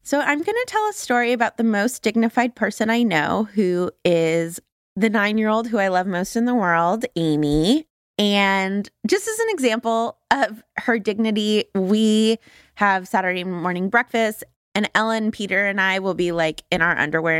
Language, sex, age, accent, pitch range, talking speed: English, female, 20-39, American, 180-230 Hz, 170 wpm